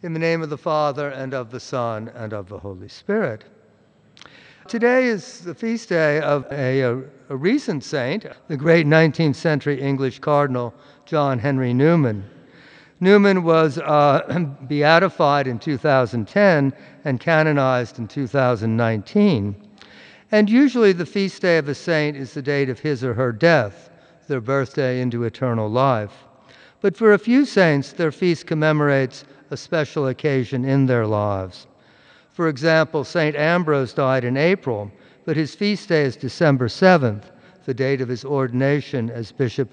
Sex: male